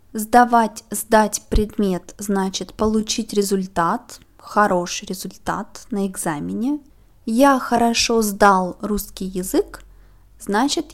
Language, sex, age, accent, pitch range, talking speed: Russian, female, 20-39, native, 200-265 Hz, 90 wpm